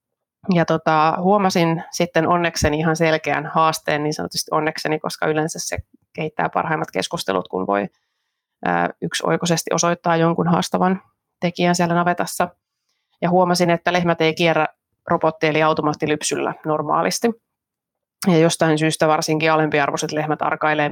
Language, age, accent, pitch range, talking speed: Finnish, 30-49, native, 150-170 Hz, 120 wpm